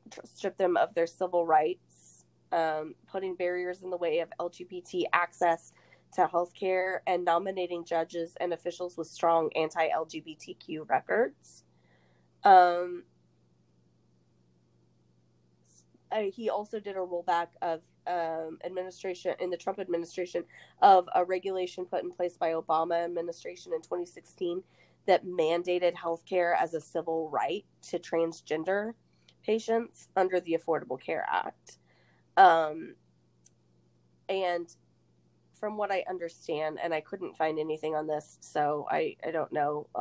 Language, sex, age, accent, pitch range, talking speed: English, female, 20-39, American, 145-180 Hz, 125 wpm